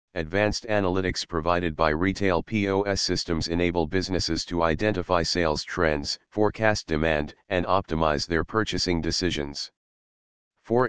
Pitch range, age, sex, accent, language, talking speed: 80-95 Hz, 40-59, male, American, English, 115 wpm